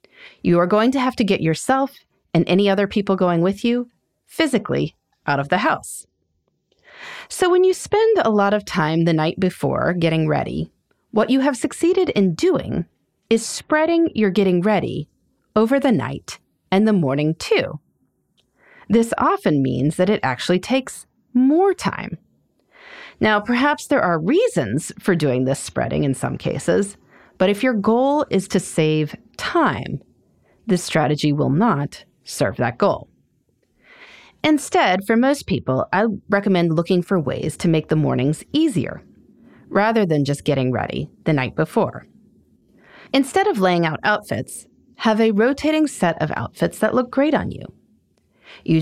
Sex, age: female, 30-49